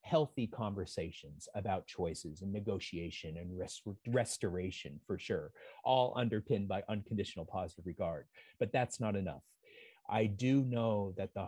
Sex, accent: male, American